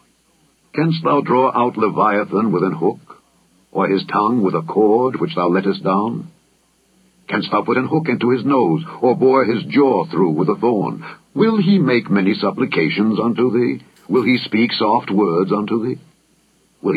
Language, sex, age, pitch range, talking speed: English, male, 60-79, 105-150 Hz, 175 wpm